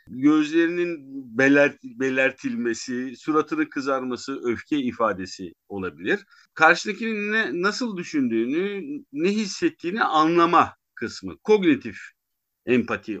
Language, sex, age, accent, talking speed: Turkish, male, 50-69, native, 75 wpm